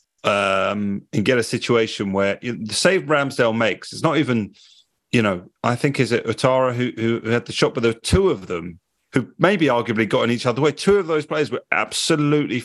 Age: 30-49